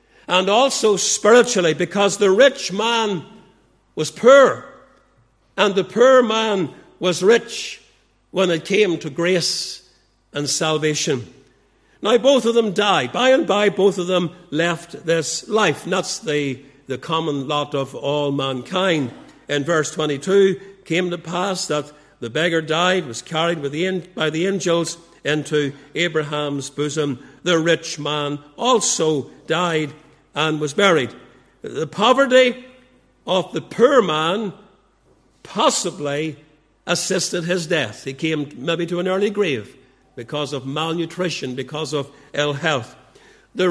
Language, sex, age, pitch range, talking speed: English, male, 60-79, 150-200 Hz, 135 wpm